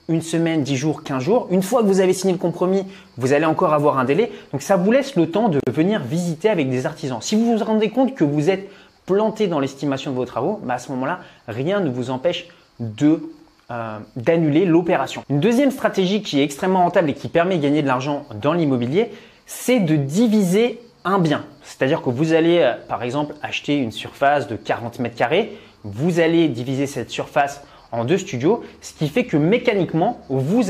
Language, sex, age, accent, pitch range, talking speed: French, male, 30-49, French, 135-195 Hz, 210 wpm